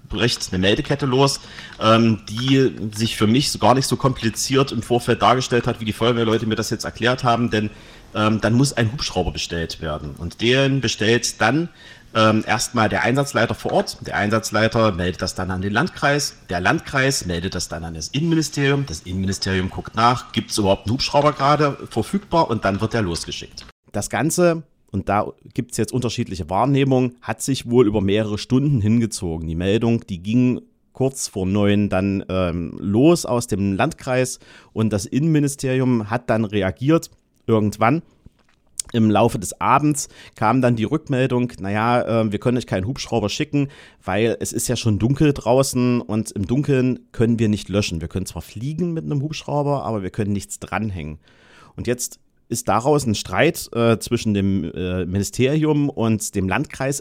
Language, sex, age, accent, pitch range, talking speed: German, male, 40-59, German, 100-130 Hz, 175 wpm